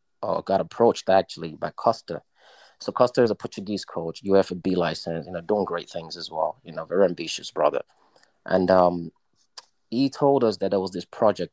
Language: English